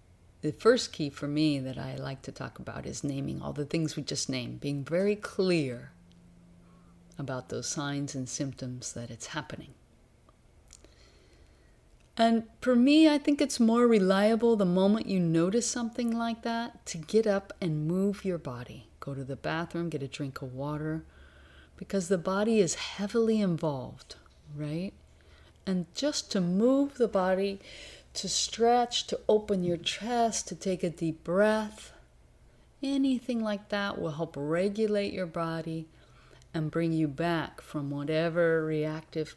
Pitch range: 135-205 Hz